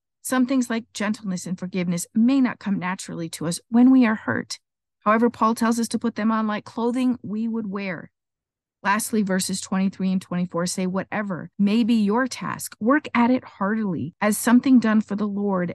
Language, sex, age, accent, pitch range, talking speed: English, female, 50-69, American, 185-230 Hz, 190 wpm